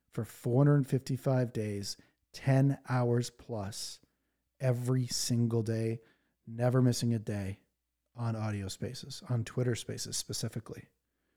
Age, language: 40-59, English